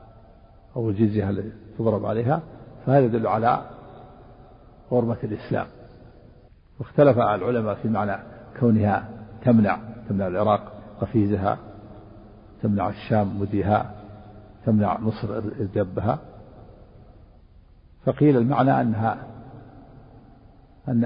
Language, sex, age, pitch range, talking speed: Arabic, male, 60-79, 105-120 Hz, 85 wpm